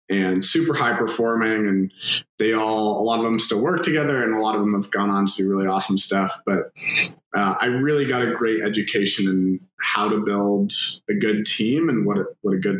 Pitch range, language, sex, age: 95-120 Hz, English, male, 20-39